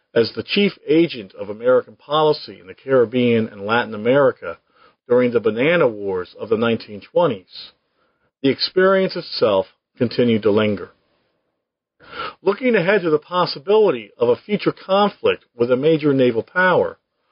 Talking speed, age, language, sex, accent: 140 wpm, 50-69, English, male, American